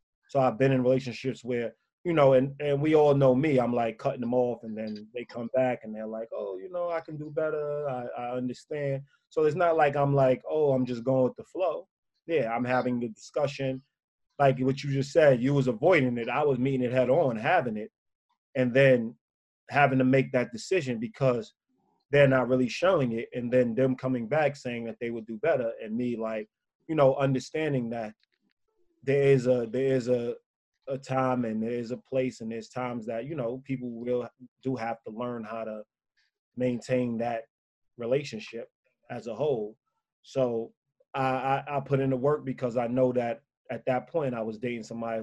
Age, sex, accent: 20-39, male, American